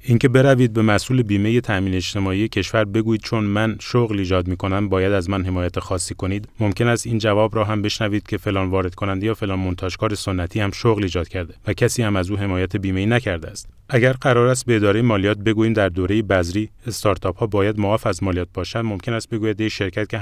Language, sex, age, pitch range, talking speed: Persian, male, 30-49, 100-115 Hz, 210 wpm